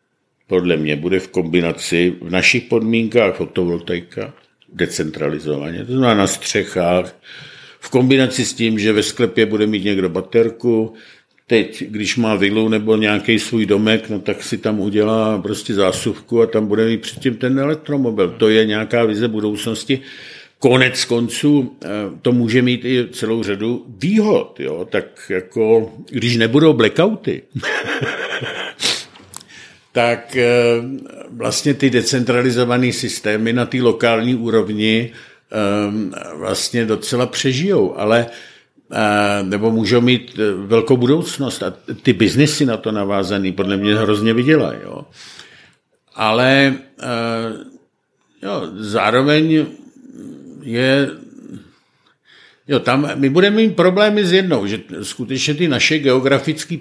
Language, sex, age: Czech, male, 50-69